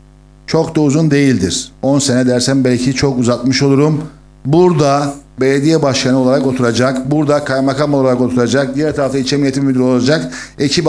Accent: native